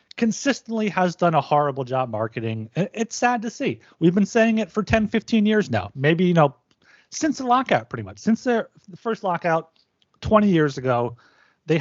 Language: English